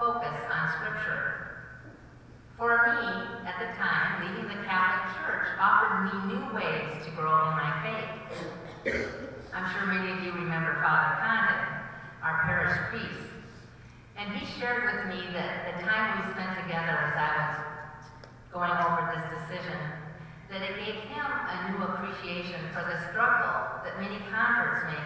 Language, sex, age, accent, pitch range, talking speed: English, female, 40-59, American, 150-195 Hz, 155 wpm